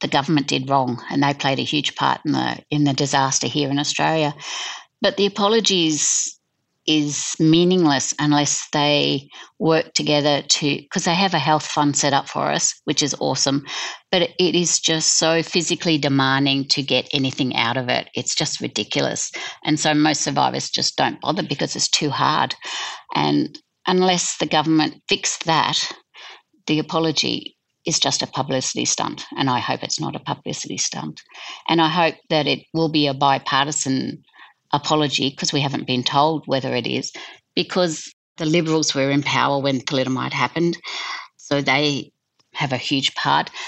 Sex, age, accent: female, 50-69, Australian